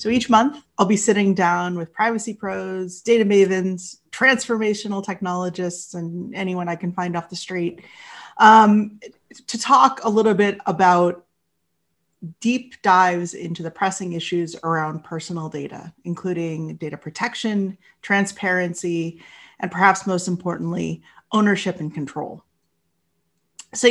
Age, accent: 30-49, American